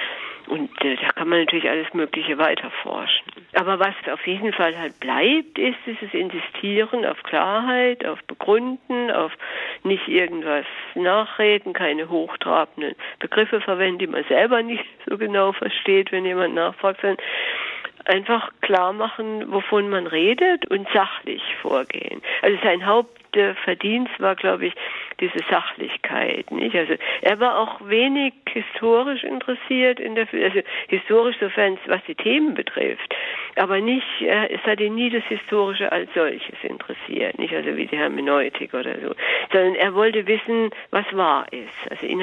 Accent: German